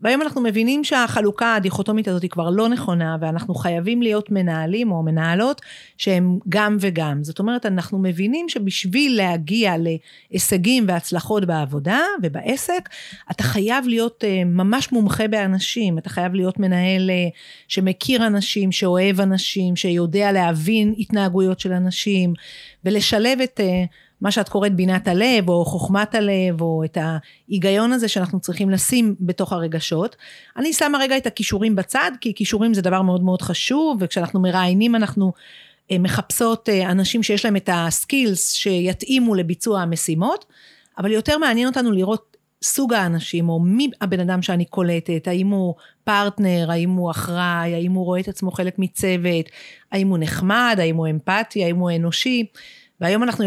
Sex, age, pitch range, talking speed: female, 40-59, 180-220 Hz, 145 wpm